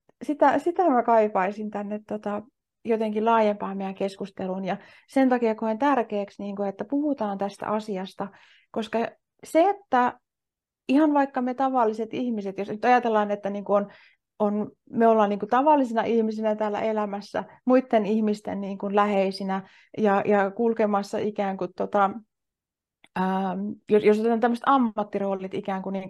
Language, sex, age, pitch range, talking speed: Finnish, female, 30-49, 195-230 Hz, 140 wpm